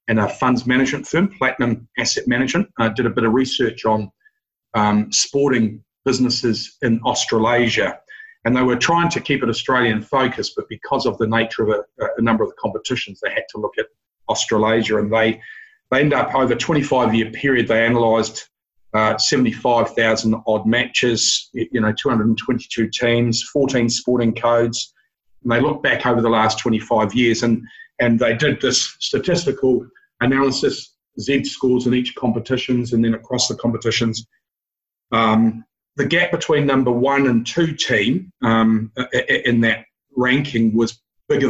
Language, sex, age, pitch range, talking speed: English, male, 40-59, 115-130 Hz, 160 wpm